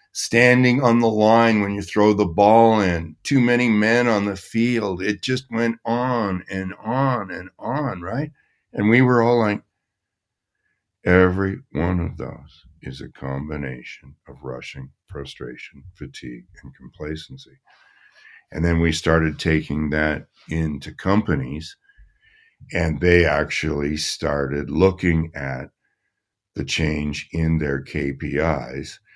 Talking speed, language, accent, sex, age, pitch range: 130 wpm, English, American, male, 60-79, 75-105 Hz